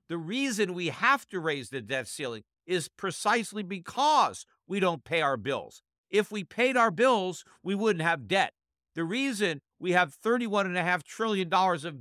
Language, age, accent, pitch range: English, 50-69, American, 170-225 Hz